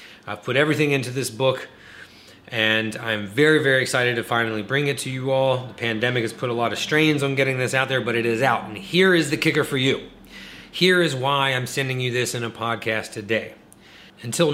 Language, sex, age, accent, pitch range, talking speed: English, male, 30-49, American, 120-165 Hz, 225 wpm